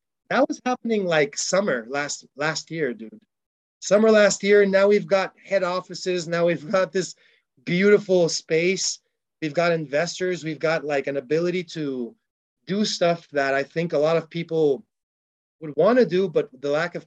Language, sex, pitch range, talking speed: English, male, 140-195 Hz, 175 wpm